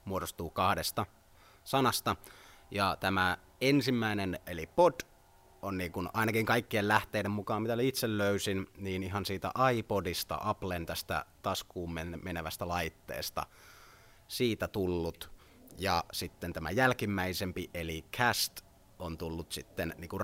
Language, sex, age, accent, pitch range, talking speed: Finnish, male, 30-49, native, 90-110 Hz, 115 wpm